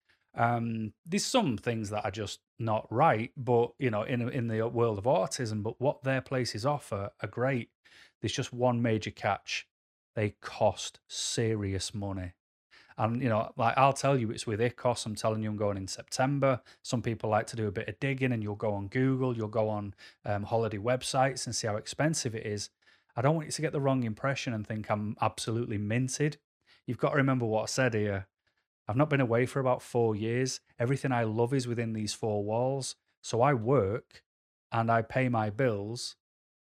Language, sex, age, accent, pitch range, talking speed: English, male, 30-49, British, 110-130 Hz, 205 wpm